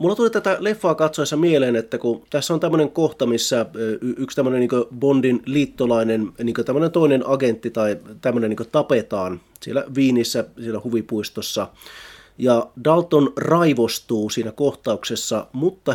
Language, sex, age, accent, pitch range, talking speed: Finnish, male, 30-49, native, 115-150 Hz, 135 wpm